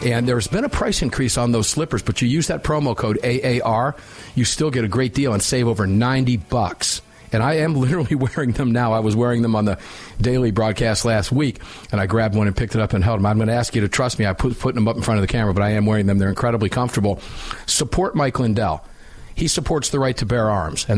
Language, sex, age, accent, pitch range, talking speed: English, male, 50-69, American, 110-125 Hz, 260 wpm